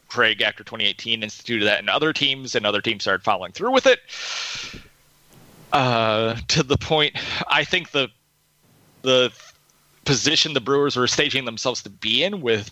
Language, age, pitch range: English, 30-49, 110-145 Hz